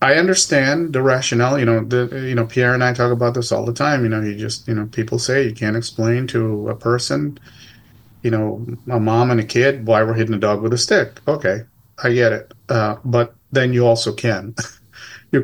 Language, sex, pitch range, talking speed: English, male, 110-120 Hz, 225 wpm